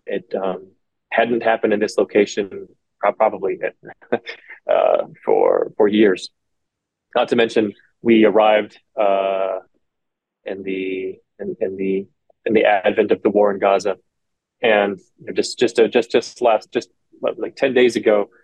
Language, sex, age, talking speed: English, male, 20-39, 140 wpm